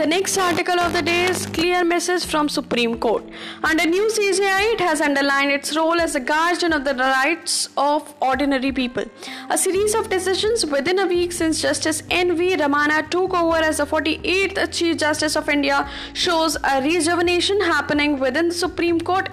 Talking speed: 180 wpm